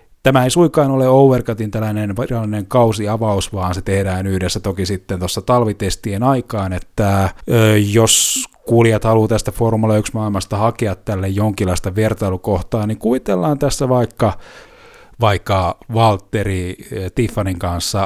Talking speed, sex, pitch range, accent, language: 115 wpm, male, 95-115 Hz, native, Finnish